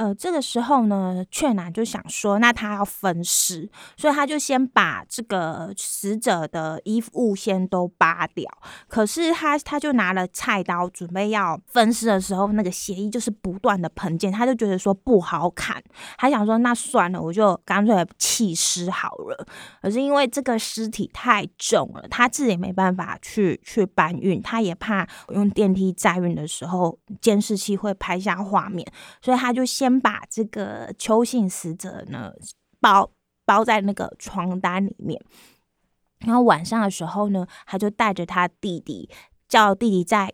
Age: 20-39